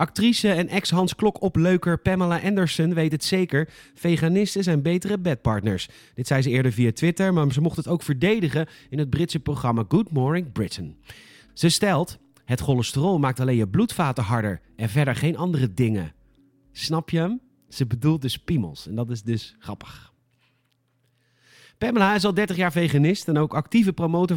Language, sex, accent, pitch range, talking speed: Dutch, male, Dutch, 130-180 Hz, 165 wpm